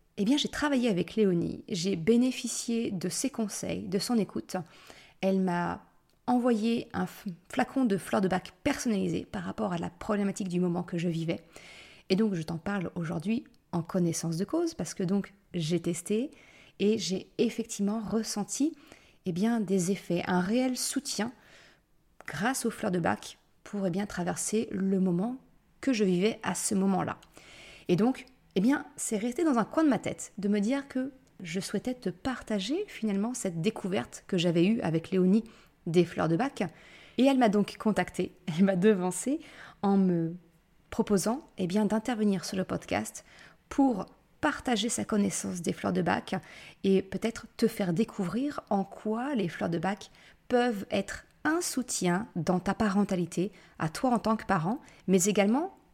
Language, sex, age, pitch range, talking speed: French, female, 30-49, 185-235 Hz, 170 wpm